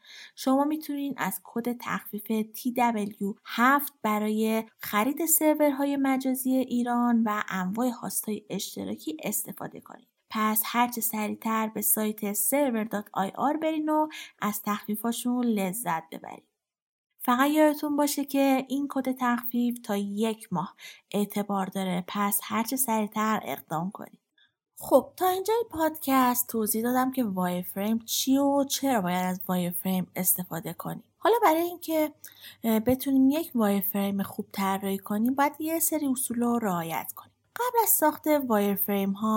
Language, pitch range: Persian, 205-275 Hz